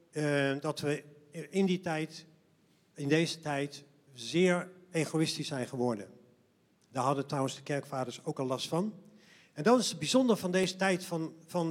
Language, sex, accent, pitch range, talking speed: Dutch, male, Dutch, 150-190 Hz, 165 wpm